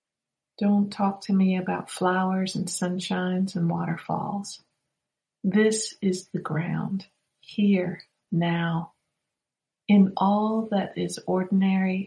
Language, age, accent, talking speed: English, 50-69, American, 105 wpm